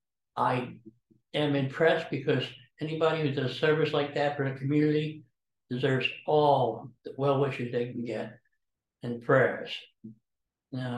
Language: English